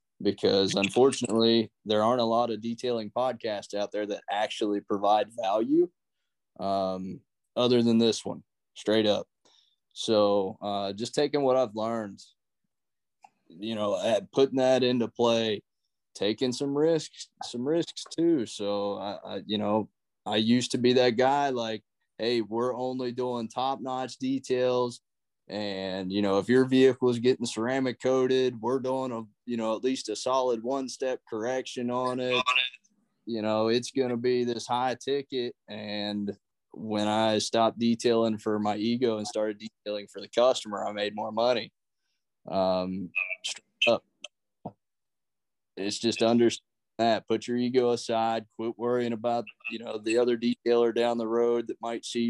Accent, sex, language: American, male, English